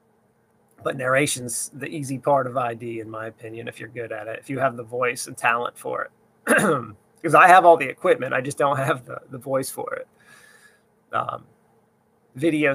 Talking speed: 195 wpm